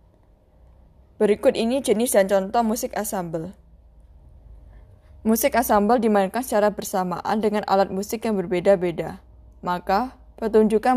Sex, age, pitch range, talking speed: female, 20-39, 180-220 Hz, 105 wpm